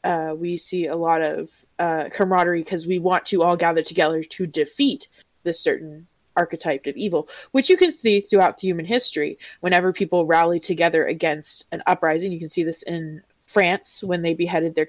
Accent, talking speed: American, 190 wpm